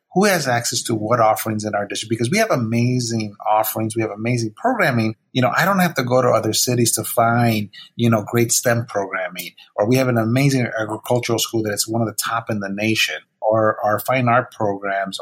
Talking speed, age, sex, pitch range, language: 215 wpm, 30-49, male, 110-130 Hz, English